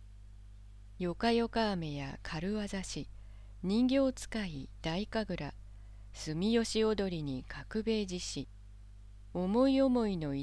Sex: female